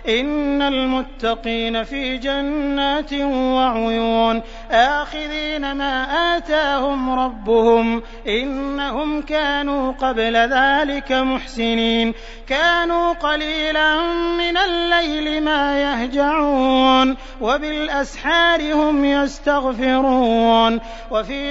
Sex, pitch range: male, 255-300 Hz